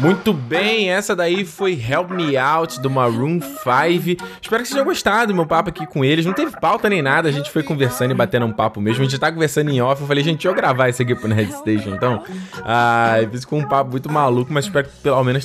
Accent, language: Brazilian, Portuguese